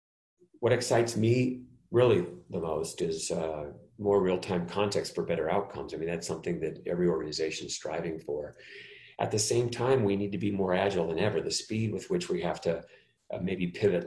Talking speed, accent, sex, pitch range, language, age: 195 wpm, American, male, 90-135 Hz, English, 40-59